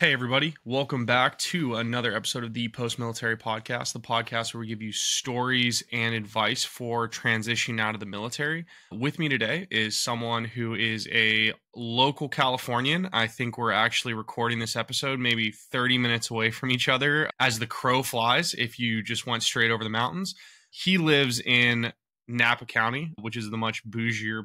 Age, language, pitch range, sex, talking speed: 20-39, English, 115-135 Hz, male, 175 wpm